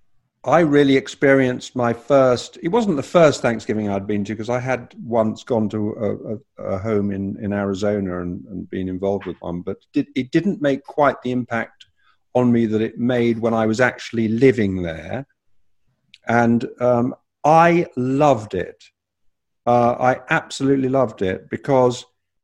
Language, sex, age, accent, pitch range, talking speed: English, male, 50-69, British, 105-130 Hz, 160 wpm